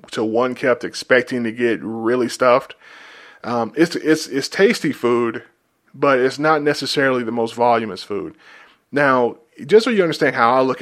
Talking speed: 165 wpm